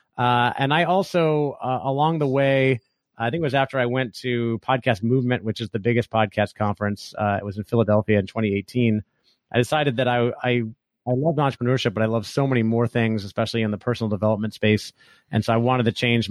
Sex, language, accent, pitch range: male, English, American, 110-130 Hz